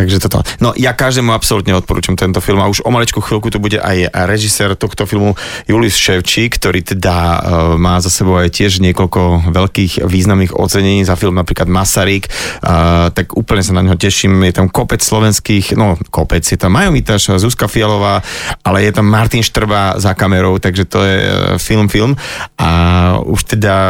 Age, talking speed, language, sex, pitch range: 30-49, 180 wpm, Slovak, male, 95-110 Hz